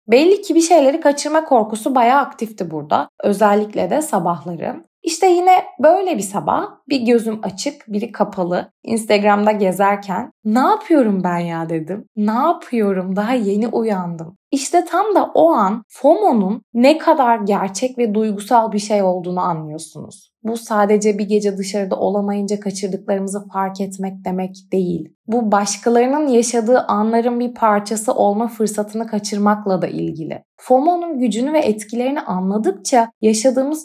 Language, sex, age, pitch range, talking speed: Turkish, female, 20-39, 200-255 Hz, 135 wpm